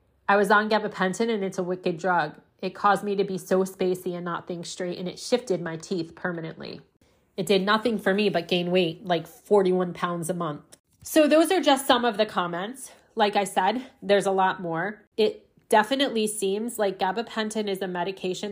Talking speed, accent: 200 wpm, American